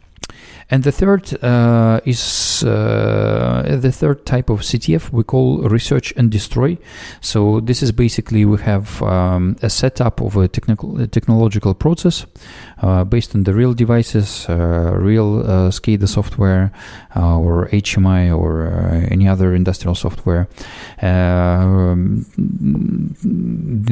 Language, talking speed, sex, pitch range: English, 130 wpm, male, 95-120 Hz